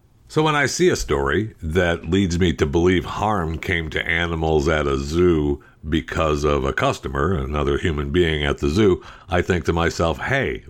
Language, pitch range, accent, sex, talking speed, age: English, 75-105 Hz, American, male, 185 wpm, 60-79